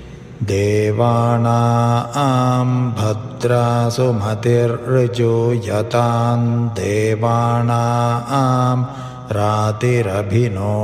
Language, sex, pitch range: Hindi, male, 115-120 Hz